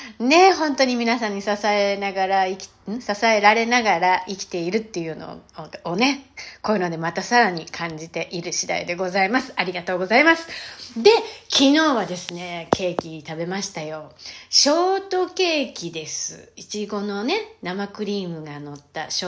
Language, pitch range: Japanese, 175-270 Hz